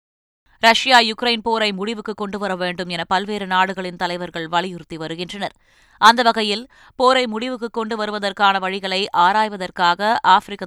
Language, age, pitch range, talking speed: Tamil, 20-39, 170-220 Hz, 120 wpm